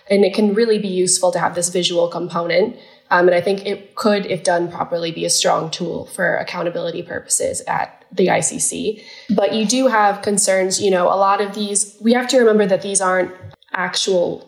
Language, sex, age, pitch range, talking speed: English, female, 10-29, 180-210 Hz, 205 wpm